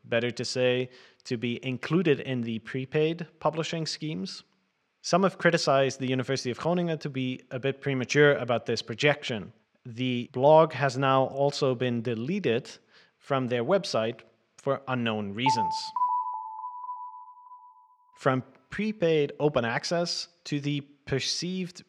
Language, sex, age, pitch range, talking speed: English, male, 30-49, 125-155 Hz, 125 wpm